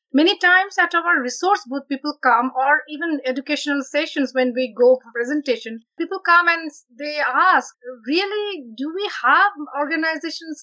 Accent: Indian